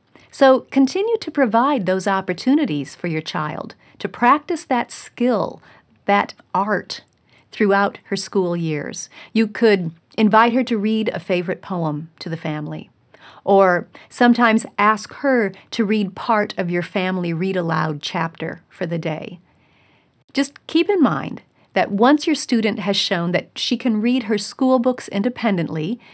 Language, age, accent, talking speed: English, 40-59, American, 150 wpm